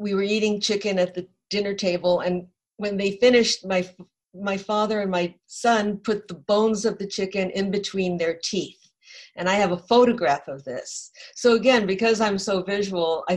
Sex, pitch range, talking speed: female, 170-200 Hz, 190 wpm